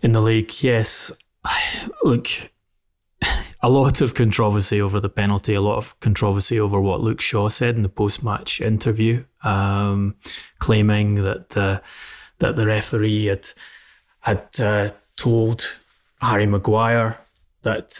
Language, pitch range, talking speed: English, 105-115 Hz, 130 wpm